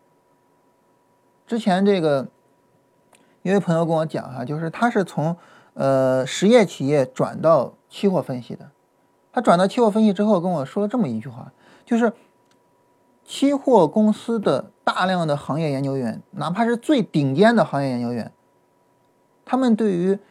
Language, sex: Chinese, male